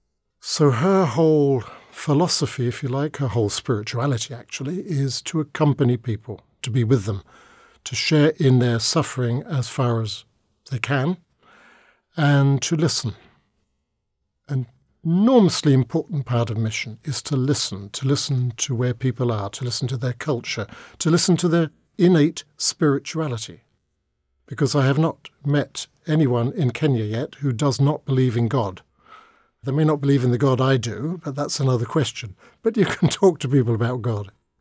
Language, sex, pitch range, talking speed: English, male, 120-150 Hz, 165 wpm